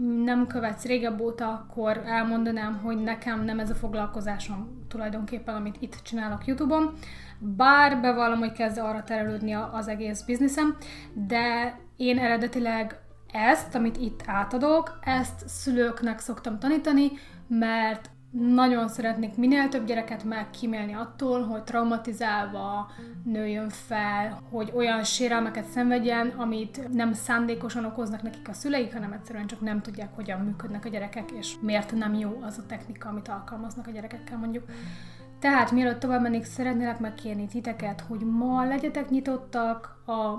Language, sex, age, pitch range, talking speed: Hungarian, female, 30-49, 220-245 Hz, 135 wpm